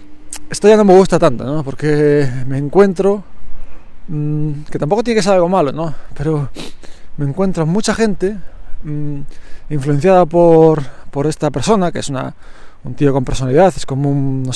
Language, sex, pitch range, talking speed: Spanish, male, 140-185 Hz, 170 wpm